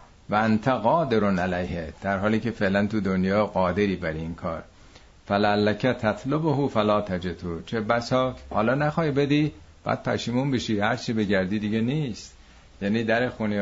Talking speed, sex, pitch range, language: 140 wpm, male, 95-125 Hz, Persian